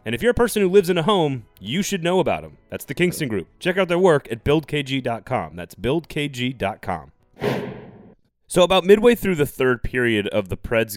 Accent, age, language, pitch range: American, 30-49, English, 100-145 Hz